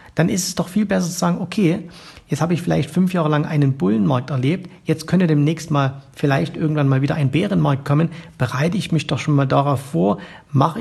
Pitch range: 130-160 Hz